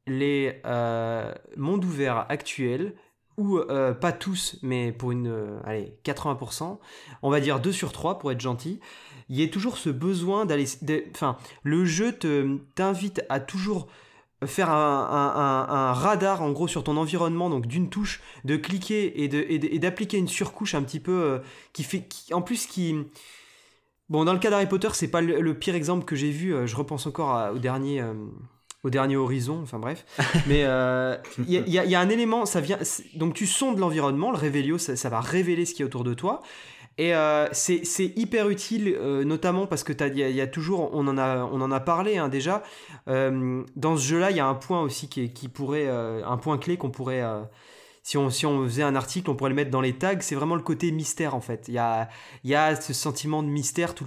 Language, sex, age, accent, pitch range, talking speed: French, male, 20-39, French, 135-175 Hz, 225 wpm